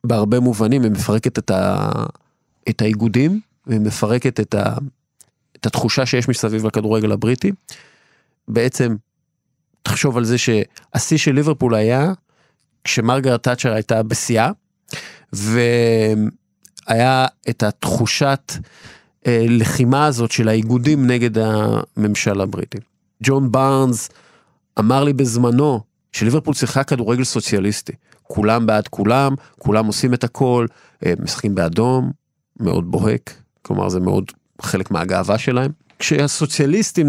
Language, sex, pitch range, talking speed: Hebrew, male, 110-140 Hz, 110 wpm